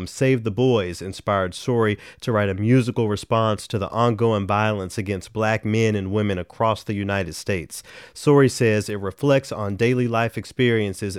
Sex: male